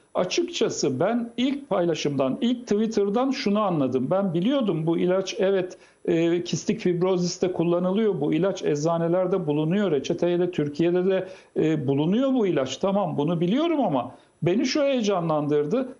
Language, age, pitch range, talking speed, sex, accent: Turkish, 60-79, 165-220 Hz, 130 wpm, male, native